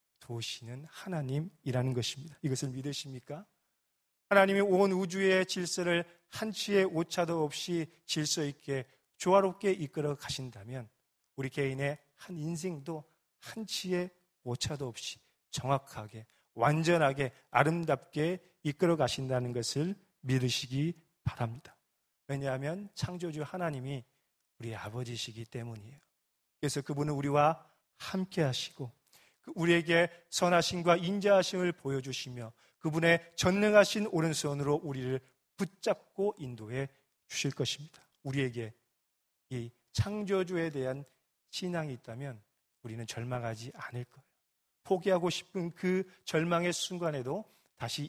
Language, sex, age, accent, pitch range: Korean, male, 40-59, native, 130-175 Hz